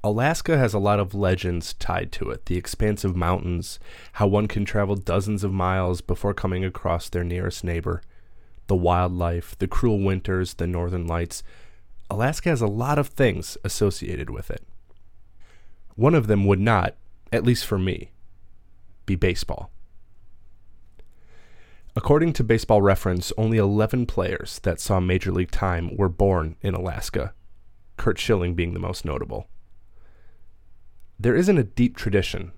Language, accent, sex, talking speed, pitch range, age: English, American, male, 145 wpm, 90-110 Hz, 20-39